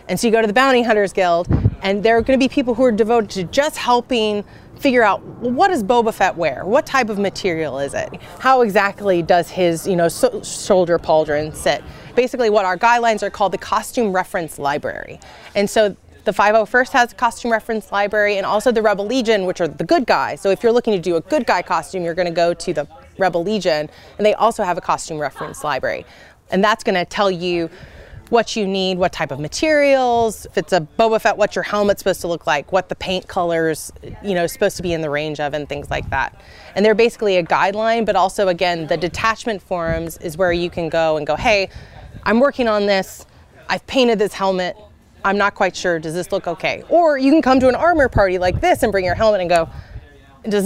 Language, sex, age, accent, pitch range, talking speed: English, female, 30-49, American, 175-230 Hz, 230 wpm